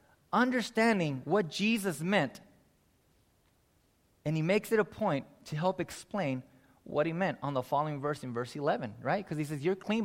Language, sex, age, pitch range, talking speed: English, male, 20-39, 165-235 Hz, 175 wpm